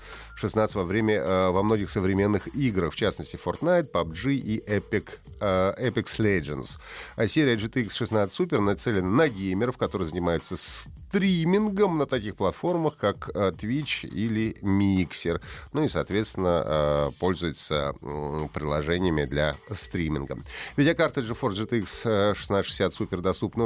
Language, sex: Russian, male